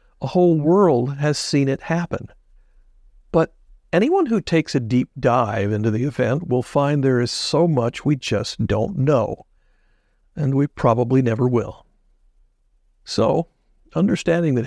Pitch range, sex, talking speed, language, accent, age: 115-150 Hz, male, 145 wpm, English, American, 50-69